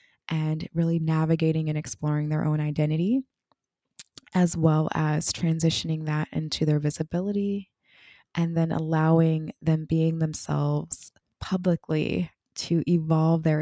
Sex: female